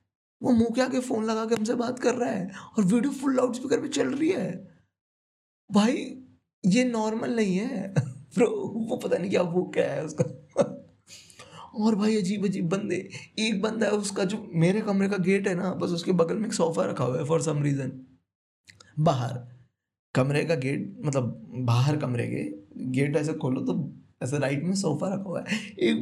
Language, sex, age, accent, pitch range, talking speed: Hindi, male, 20-39, native, 150-230 Hz, 180 wpm